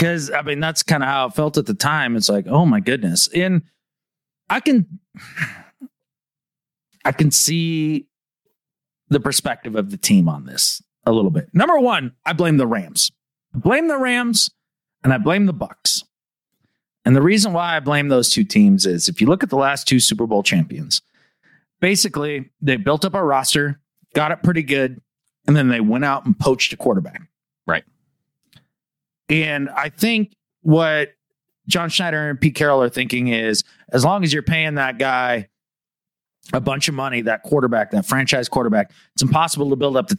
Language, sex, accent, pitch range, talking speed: English, male, American, 135-185 Hz, 180 wpm